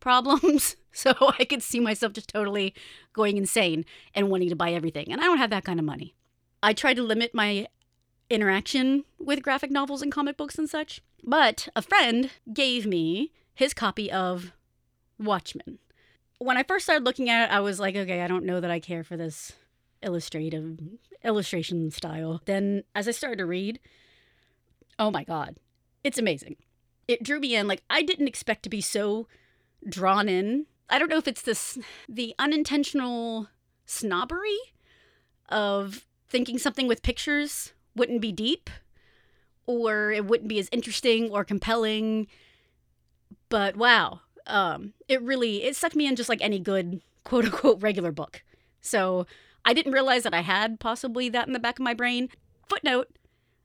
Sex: female